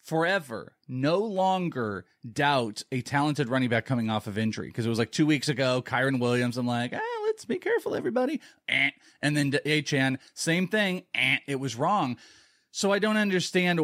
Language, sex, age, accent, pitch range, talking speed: English, male, 30-49, American, 110-145 Hz, 180 wpm